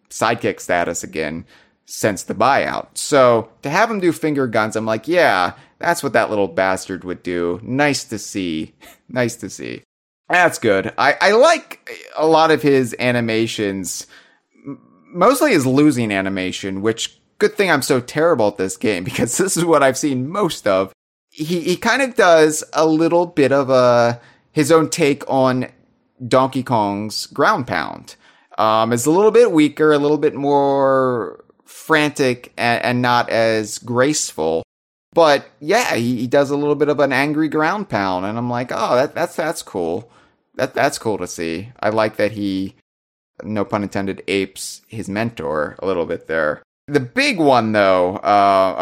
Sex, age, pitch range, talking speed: male, 30-49, 95-145 Hz, 170 wpm